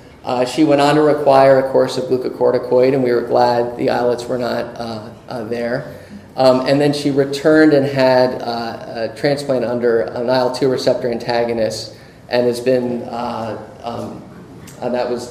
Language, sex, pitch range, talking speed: English, male, 120-130 Hz, 175 wpm